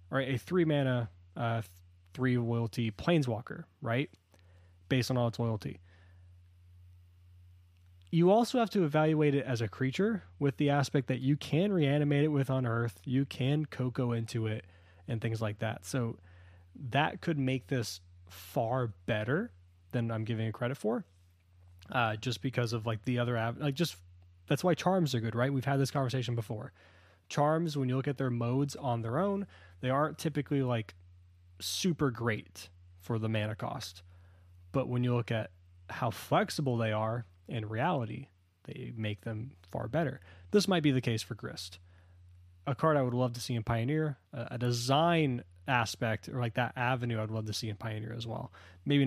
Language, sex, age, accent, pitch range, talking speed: English, male, 20-39, American, 90-135 Hz, 180 wpm